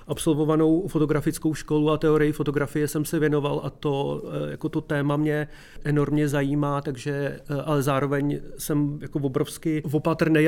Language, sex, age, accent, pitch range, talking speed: Czech, male, 30-49, native, 135-145 Hz, 140 wpm